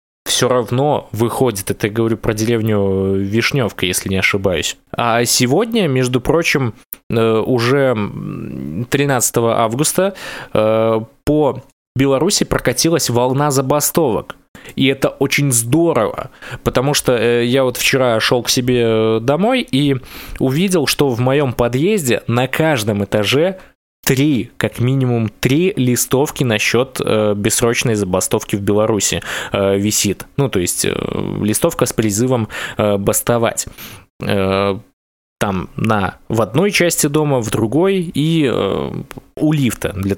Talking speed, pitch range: 120 wpm, 110-140 Hz